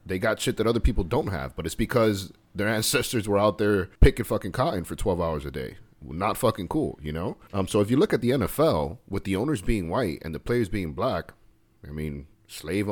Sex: male